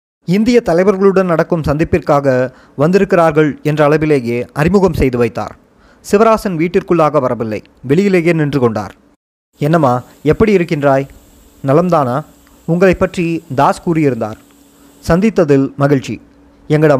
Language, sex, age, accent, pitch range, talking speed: Tamil, male, 20-39, native, 130-170 Hz, 95 wpm